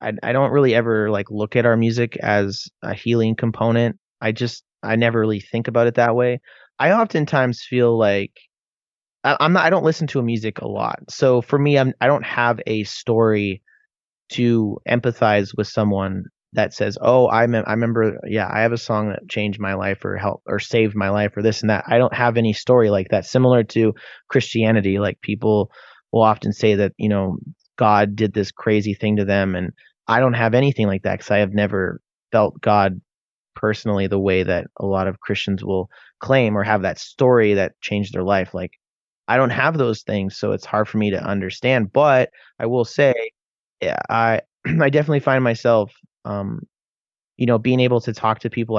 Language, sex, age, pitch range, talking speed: English, male, 30-49, 100-120 Hz, 200 wpm